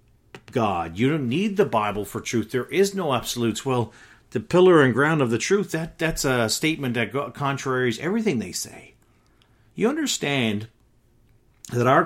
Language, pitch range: English, 110-135 Hz